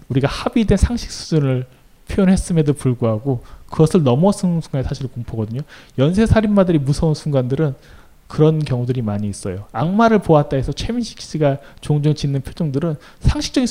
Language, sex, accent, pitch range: Korean, male, native, 125-180 Hz